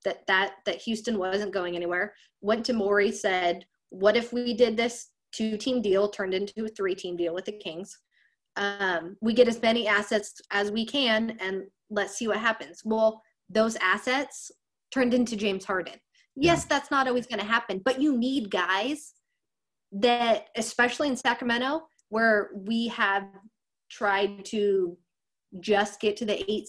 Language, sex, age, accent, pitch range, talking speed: English, female, 20-39, American, 195-235 Hz, 160 wpm